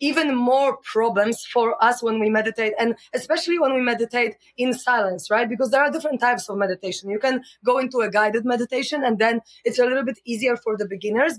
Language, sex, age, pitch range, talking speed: English, female, 20-39, 220-260 Hz, 210 wpm